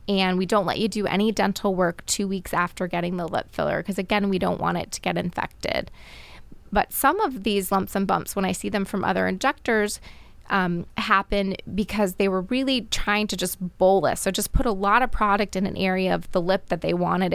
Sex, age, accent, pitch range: female, 20-39, American, 190-240 Hz